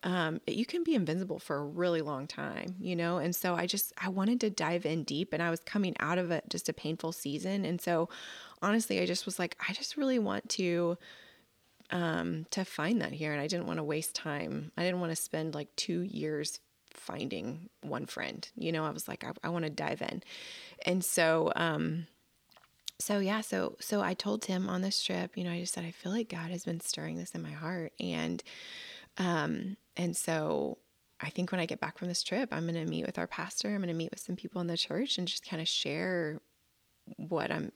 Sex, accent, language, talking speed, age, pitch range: female, American, English, 230 wpm, 20-39, 160-190 Hz